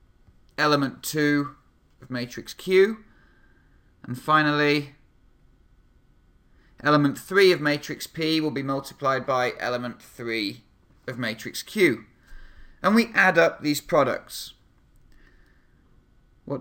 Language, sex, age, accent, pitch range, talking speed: English, male, 40-59, British, 125-165 Hz, 100 wpm